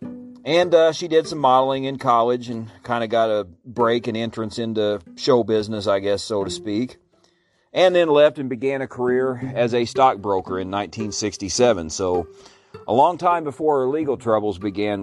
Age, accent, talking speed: 40-59, American, 180 wpm